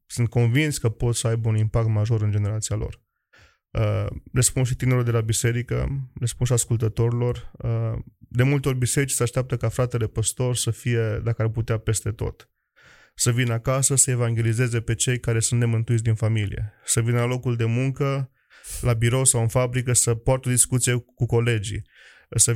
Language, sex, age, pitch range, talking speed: Romanian, male, 20-39, 110-125 Hz, 175 wpm